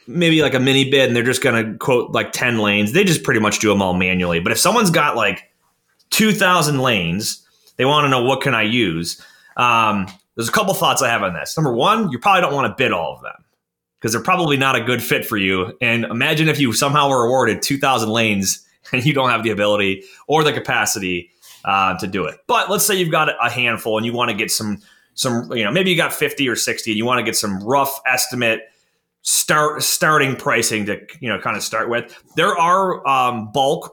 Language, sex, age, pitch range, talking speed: English, male, 30-49, 110-135 Hz, 235 wpm